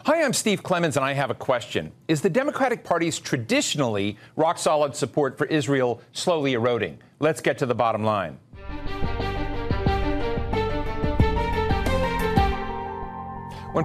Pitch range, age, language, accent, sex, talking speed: 125-180 Hz, 50-69, English, American, male, 115 wpm